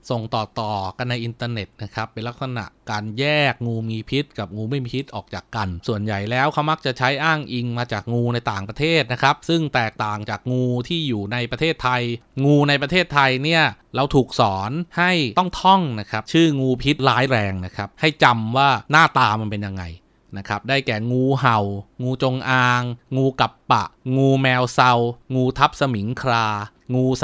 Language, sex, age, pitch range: Thai, male, 20-39, 110-145 Hz